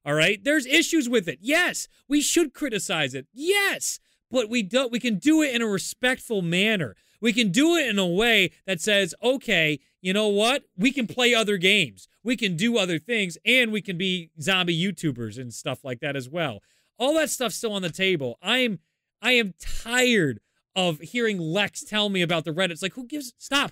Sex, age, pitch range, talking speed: male, 30-49, 190-250 Hz, 205 wpm